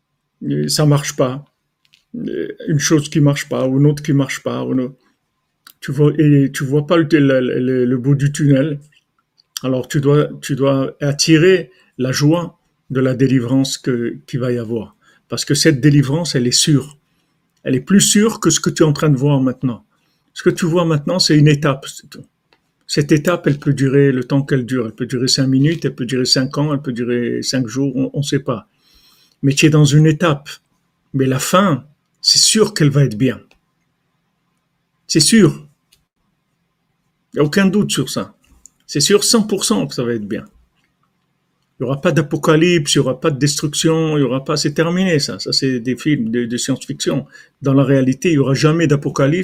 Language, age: French, 50-69